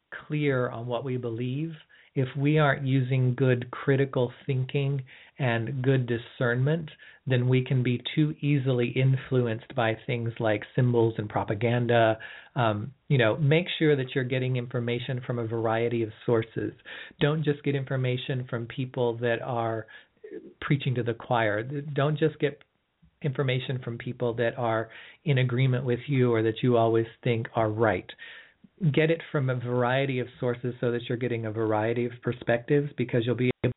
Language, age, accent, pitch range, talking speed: English, 40-59, American, 120-140 Hz, 165 wpm